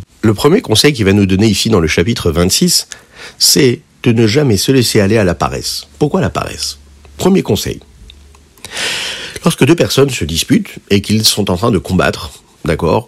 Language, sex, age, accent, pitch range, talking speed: French, male, 50-69, French, 85-120 Hz, 185 wpm